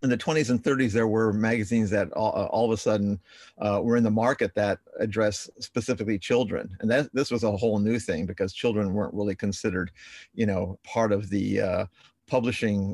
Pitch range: 100-115 Hz